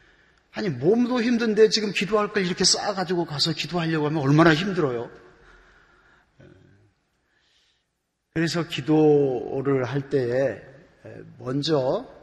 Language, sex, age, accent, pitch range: Korean, male, 40-59, native, 135-180 Hz